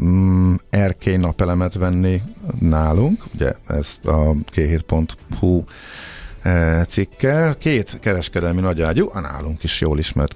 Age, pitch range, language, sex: 50-69, 80-105 Hz, Hungarian, male